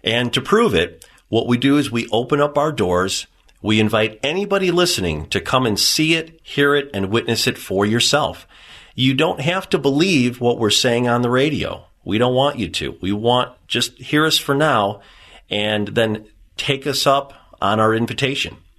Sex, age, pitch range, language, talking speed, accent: male, 40-59, 95-135 Hz, English, 190 wpm, American